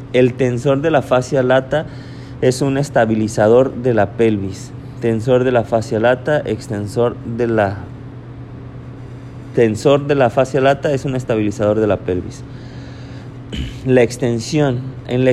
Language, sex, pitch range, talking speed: Spanish, male, 120-135 Hz, 135 wpm